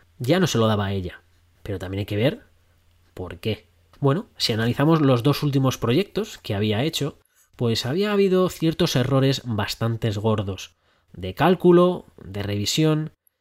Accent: Spanish